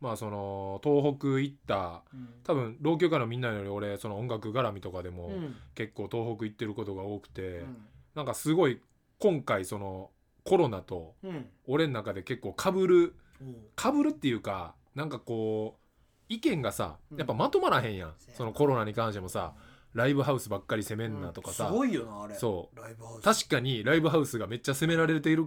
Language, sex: Japanese, male